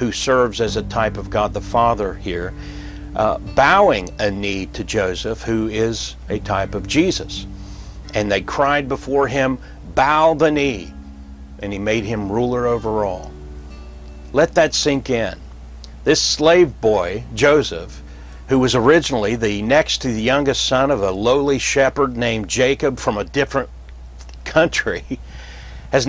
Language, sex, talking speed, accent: English, male, 150 wpm, American